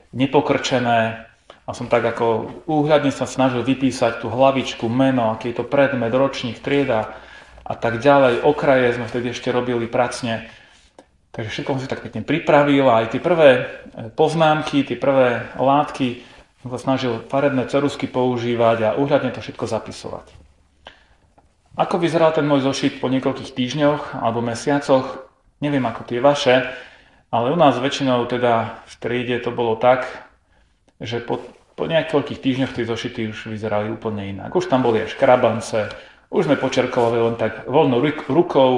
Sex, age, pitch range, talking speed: male, 30-49, 115-135 Hz, 155 wpm